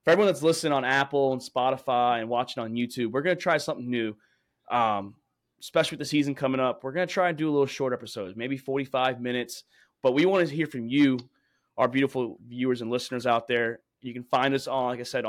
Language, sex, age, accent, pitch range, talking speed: English, male, 20-39, American, 120-135 Hz, 235 wpm